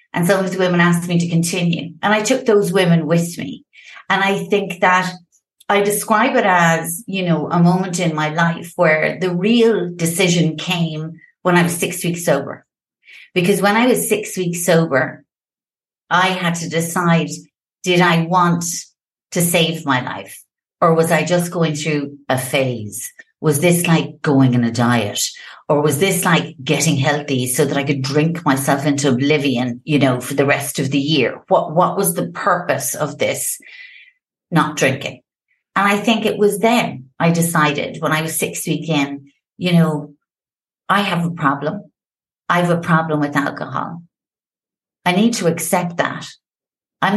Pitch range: 155-185 Hz